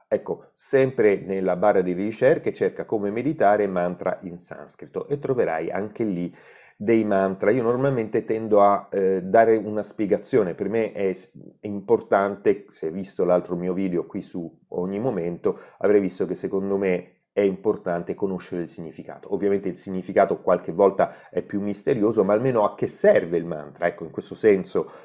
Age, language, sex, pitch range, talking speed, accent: 30-49, Italian, male, 90-110 Hz, 165 wpm, native